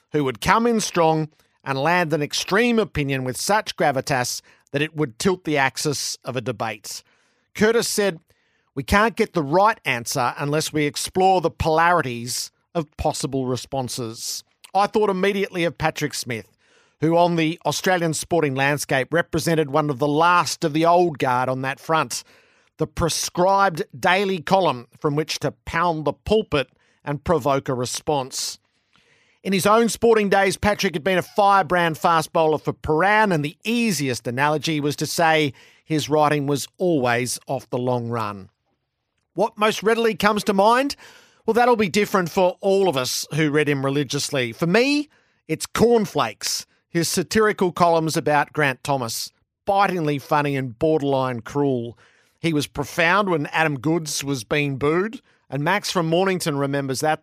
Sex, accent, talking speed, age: male, Australian, 160 wpm, 50-69